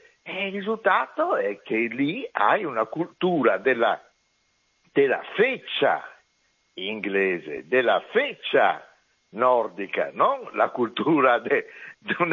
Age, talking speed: 60-79, 95 wpm